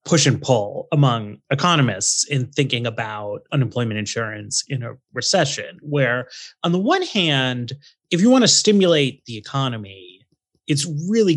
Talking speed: 145 wpm